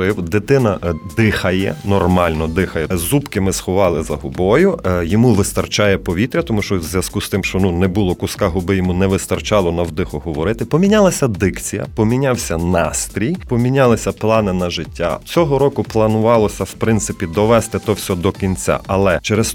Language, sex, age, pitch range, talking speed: Ukrainian, male, 30-49, 95-120 Hz, 155 wpm